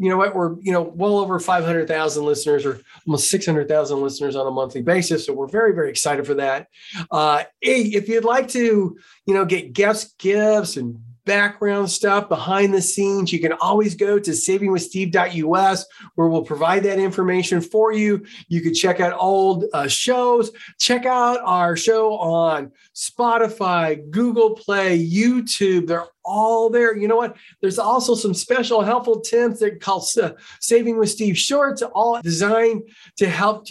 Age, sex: 40-59, male